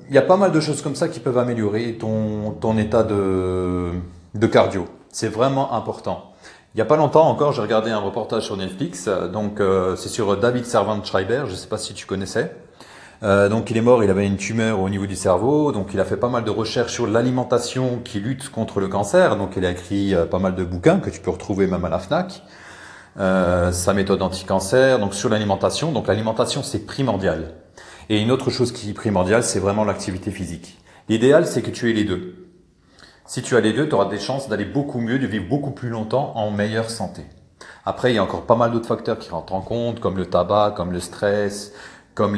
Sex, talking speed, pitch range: male, 225 wpm, 100-125 Hz